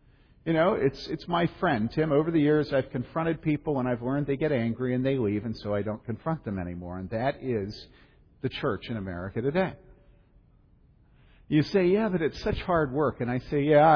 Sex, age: male, 50-69